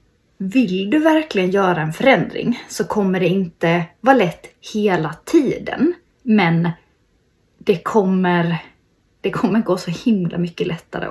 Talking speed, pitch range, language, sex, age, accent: 125 wpm, 175-230 Hz, Swedish, female, 20-39, native